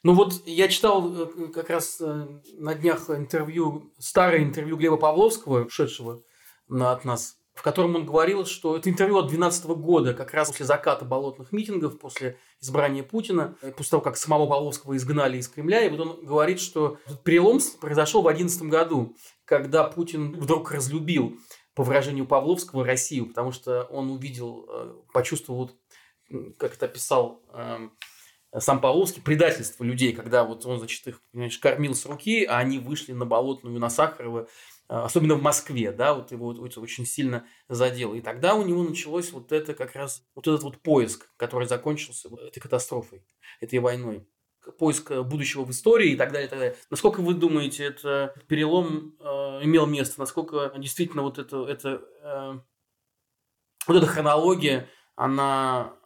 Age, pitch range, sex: 30-49, 130-165 Hz, male